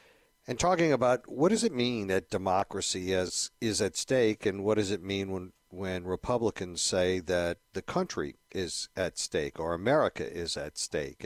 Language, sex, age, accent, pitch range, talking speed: English, male, 50-69, American, 90-105 Hz, 175 wpm